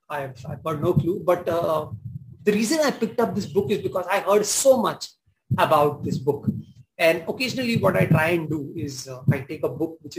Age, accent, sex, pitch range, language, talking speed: 30-49, Indian, male, 150-185 Hz, English, 210 wpm